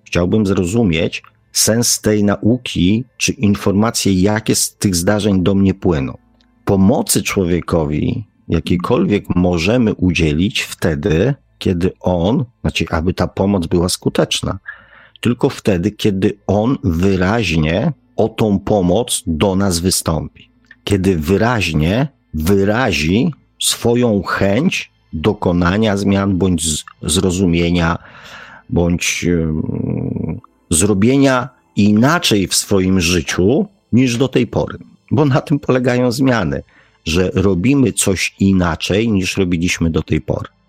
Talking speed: 105 wpm